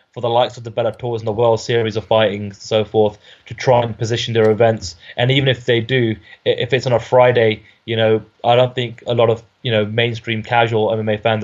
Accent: British